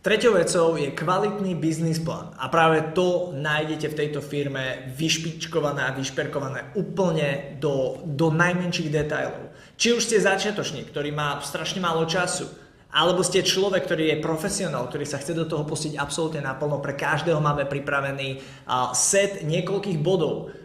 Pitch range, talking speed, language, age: 145-185 Hz, 145 wpm, Slovak, 20-39